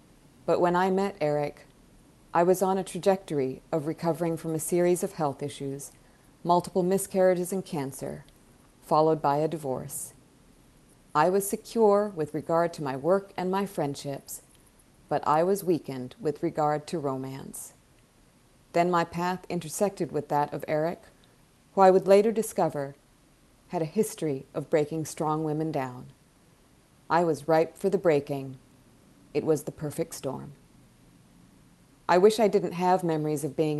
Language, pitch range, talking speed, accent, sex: English, 145-180 Hz, 150 wpm, American, female